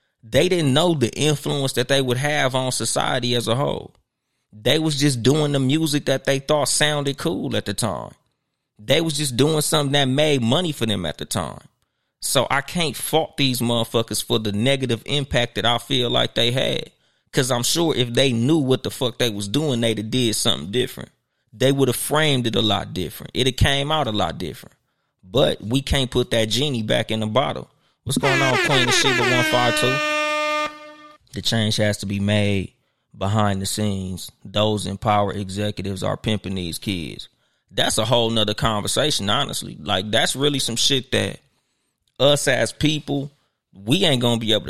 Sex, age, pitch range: male, 20-39, 110-145 Hz